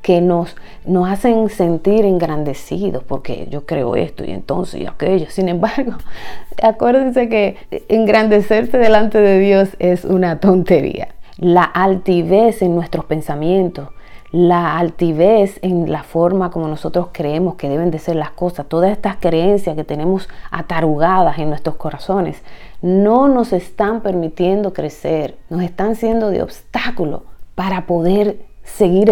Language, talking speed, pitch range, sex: Spanish, 135 wpm, 170-215 Hz, female